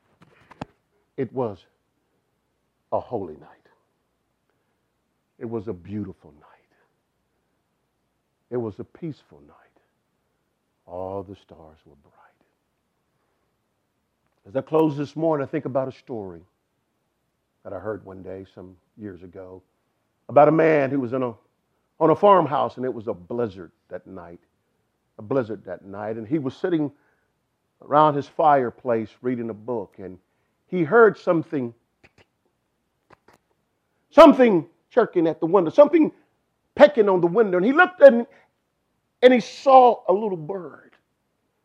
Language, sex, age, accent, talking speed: English, male, 50-69, American, 130 wpm